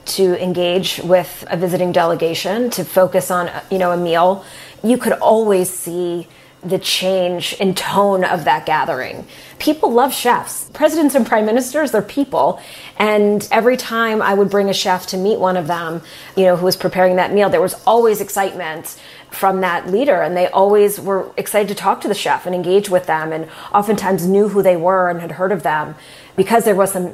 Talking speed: 195 wpm